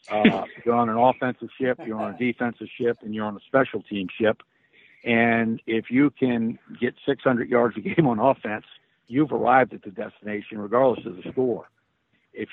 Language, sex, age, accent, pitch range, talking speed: English, male, 60-79, American, 110-130 Hz, 185 wpm